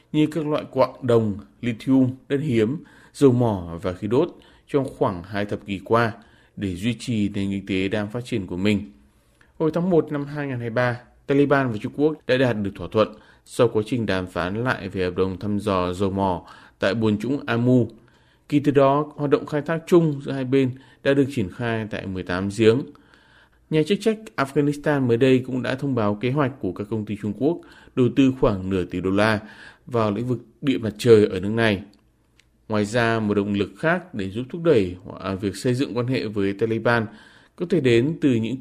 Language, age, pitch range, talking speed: Vietnamese, 20-39, 100-135 Hz, 210 wpm